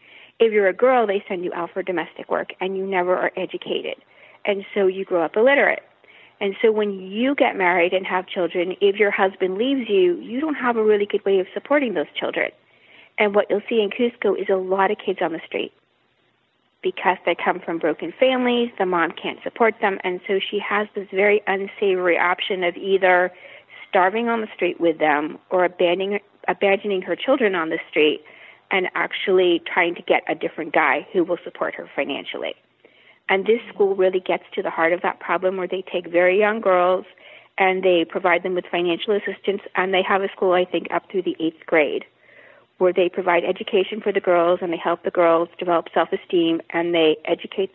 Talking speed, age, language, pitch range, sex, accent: 200 wpm, 40-59, English, 180-210 Hz, female, American